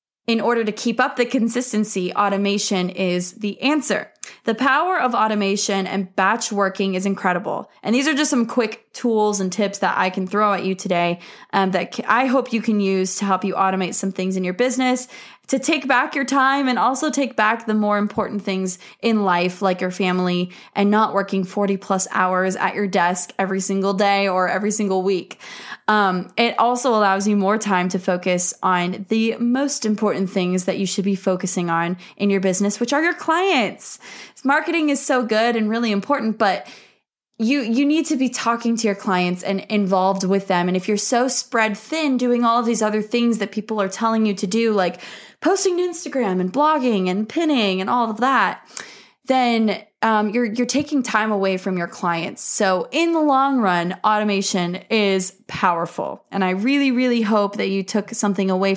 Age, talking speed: 20-39, 195 wpm